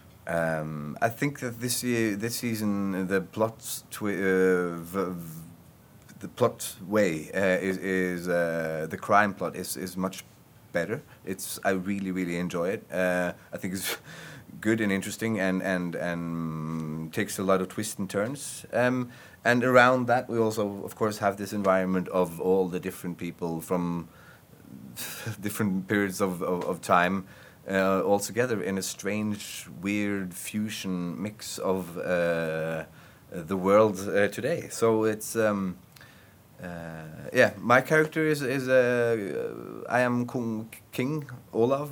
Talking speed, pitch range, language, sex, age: 155 wpm, 90-115 Hz, German, male, 30-49